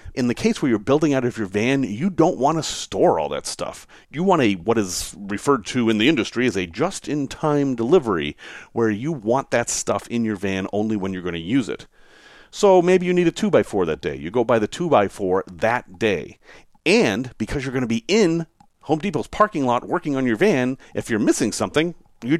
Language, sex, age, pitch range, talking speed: English, male, 40-59, 105-155 Hz, 220 wpm